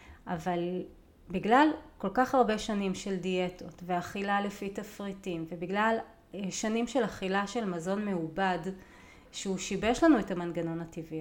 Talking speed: 130 wpm